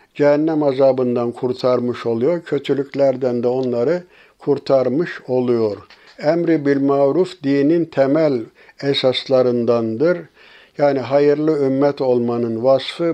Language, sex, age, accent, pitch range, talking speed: Turkish, male, 60-79, native, 130-150 Hz, 90 wpm